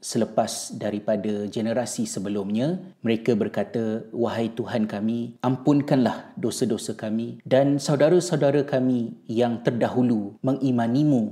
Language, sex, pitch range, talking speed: Malay, male, 110-125 Hz, 95 wpm